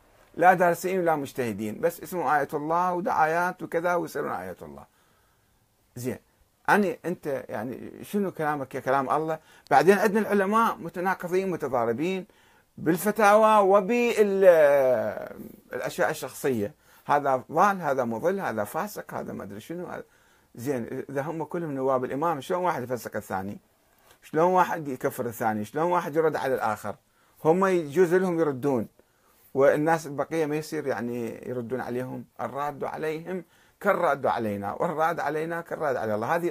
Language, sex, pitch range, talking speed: Arabic, male, 120-180 Hz, 135 wpm